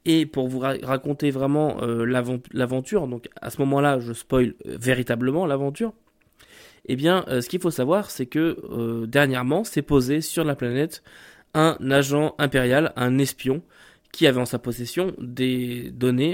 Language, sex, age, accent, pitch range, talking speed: French, male, 20-39, French, 125-160 Hz, 160 wpm